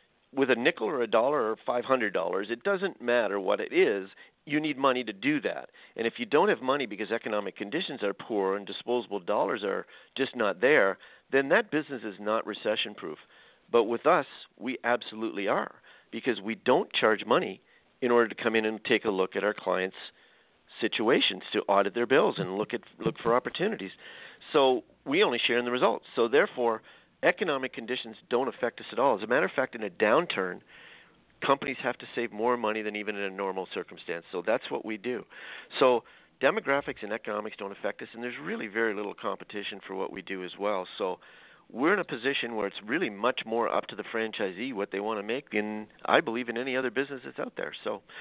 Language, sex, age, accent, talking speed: English, male, 50-69, American, 210 wpm